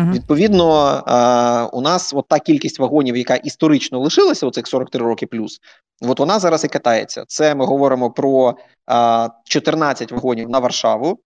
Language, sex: Ukrainian, male